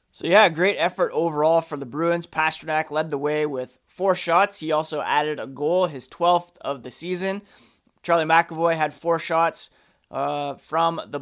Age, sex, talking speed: 30-49, male, 175 wpm